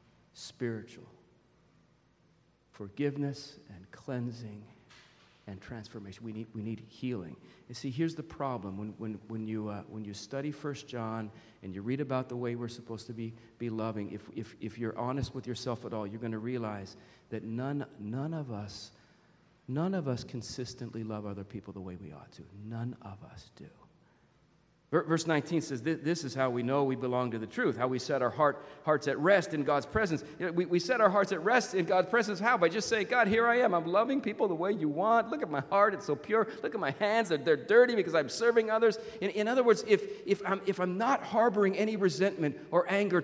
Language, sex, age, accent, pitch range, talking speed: English, male, 40-59, American, 120-195 Hz, 215 wpm